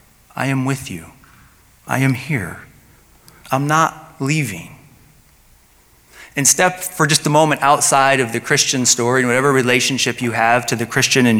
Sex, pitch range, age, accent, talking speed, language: male, 115-140 Hz, 30-49, American, 160 wpm, English